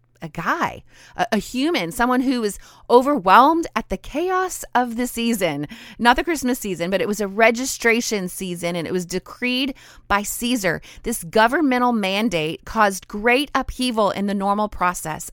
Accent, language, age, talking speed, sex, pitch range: American, English, 30-49, 155 wpm, female, 170-240 Hz